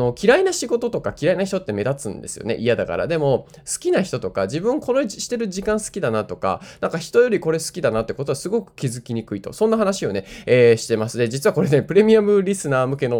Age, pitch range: 20-39, 115-190 Hz